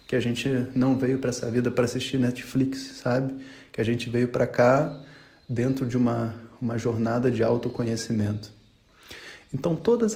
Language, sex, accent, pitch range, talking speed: Portuguese, male, Brazilian, 120-145 Hz, 160 wpm